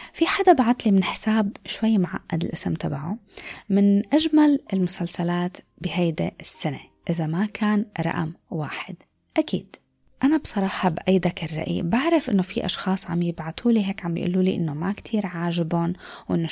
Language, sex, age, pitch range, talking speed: Arabic, female, 20-39, 170-225 Hz, 140 wpm